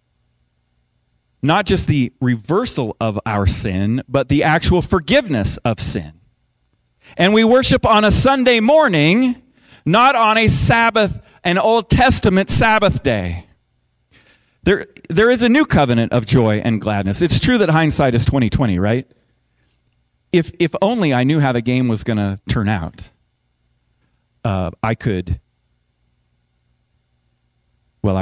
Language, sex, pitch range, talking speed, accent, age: English, male, 100-165 Hz, 135 wpm, American, 40-59